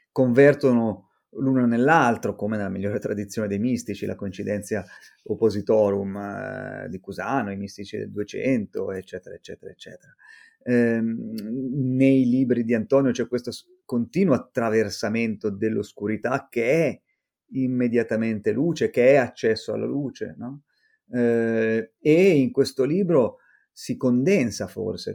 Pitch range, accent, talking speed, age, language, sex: 105-135 Hz, native, 120 wpm, 30-49, Italian, male